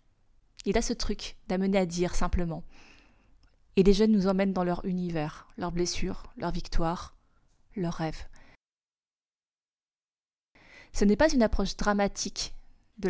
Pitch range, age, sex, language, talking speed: 175-210 Hz, 20-39, female, French, 135 wpm